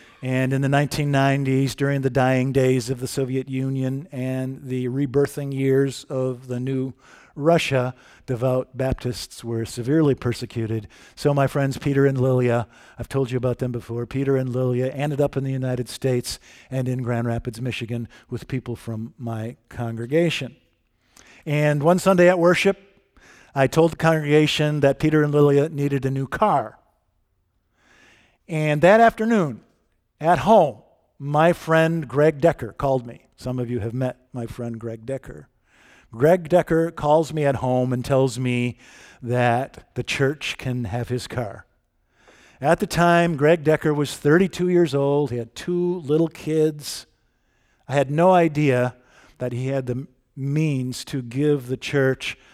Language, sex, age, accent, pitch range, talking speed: English, male, 50-69, American, 125-150 Hz, 155 wpm